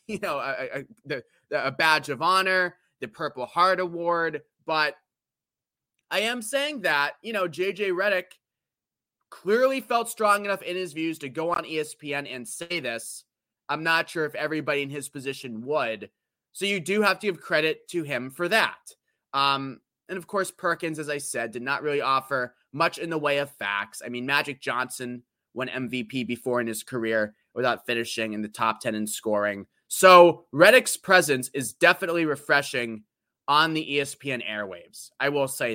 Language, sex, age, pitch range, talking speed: English, male, 20-39, 125-175 Hz, 175 wpm